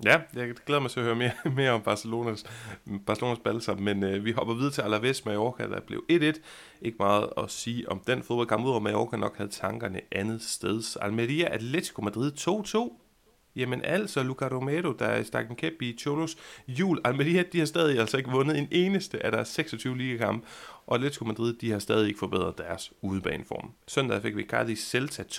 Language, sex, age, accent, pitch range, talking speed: Danish, male, 30-49, native, 105-140 Hz, 195 wpm